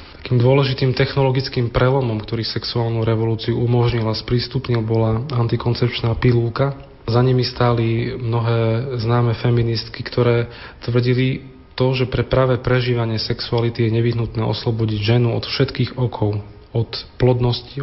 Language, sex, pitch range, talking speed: Slovak, male, 115-125 Hz, 120 wpm